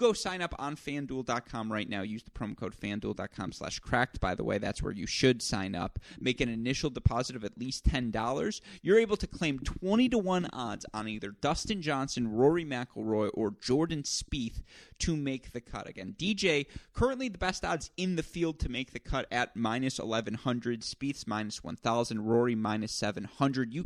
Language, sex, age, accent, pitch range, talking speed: English, male, 30-49, American, 110-150 Hz, 190 wpm